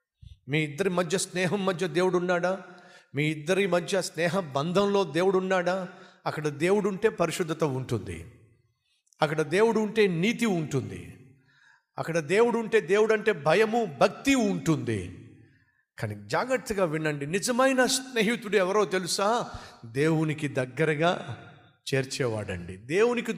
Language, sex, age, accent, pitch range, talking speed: Telugu, male, 50-69, native, 155-220 Hz, 110 wpm